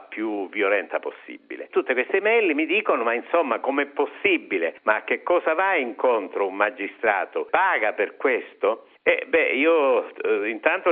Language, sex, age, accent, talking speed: Italian, male, 60-79, native, 150 wpm